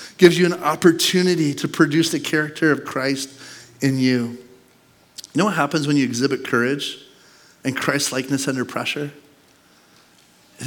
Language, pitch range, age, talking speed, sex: English, 145-200 Hz, 30-49, 140 wpm, male